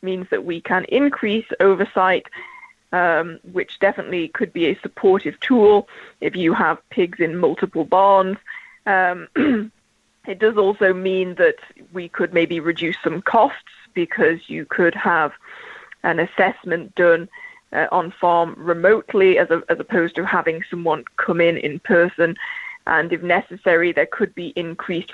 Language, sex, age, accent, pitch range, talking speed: English, female, 20-39, British, 170-205 Hz, 145 wpm